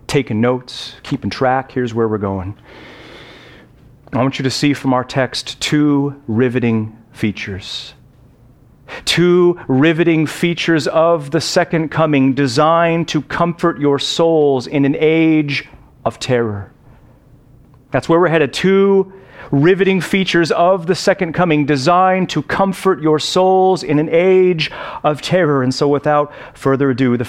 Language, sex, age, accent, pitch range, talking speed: English, male, 40-59, American, 125-175 Hz, 140 wpm